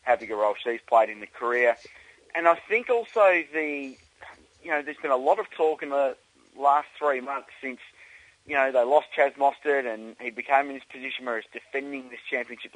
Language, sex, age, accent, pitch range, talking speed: English, male, 30-49, Australian, 115-145 Hz, 205 wpm